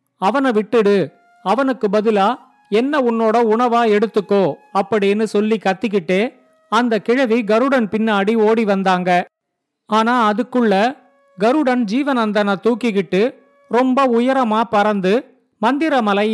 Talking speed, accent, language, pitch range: 95 wpm, native, Tamil, 205-245 Hz